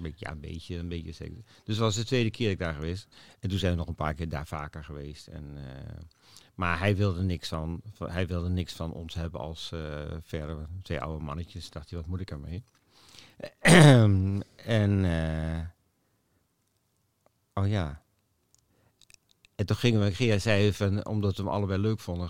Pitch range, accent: 90-115 Hz, Dutch